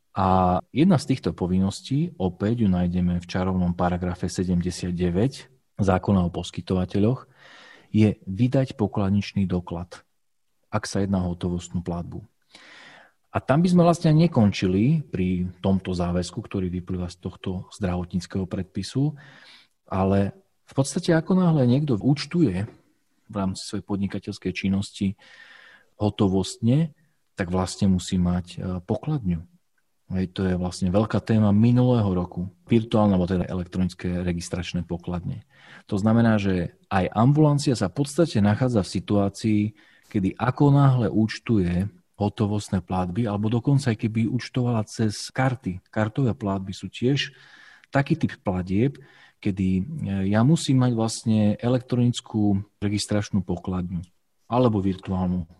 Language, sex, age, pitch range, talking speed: Slovak, male, 40-59, 90-120 Hz, 120 wpm